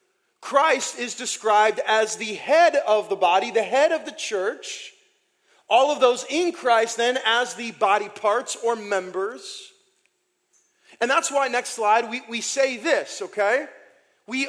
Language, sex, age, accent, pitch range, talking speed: English, male, 40-59, American, 250-360 Hz, 155 wpm